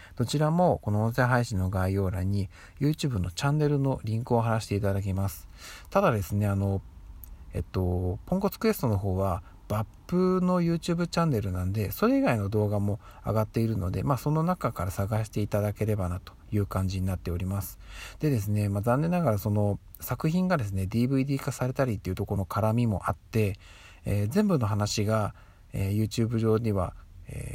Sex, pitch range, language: male, 95-120 Hz, Japanese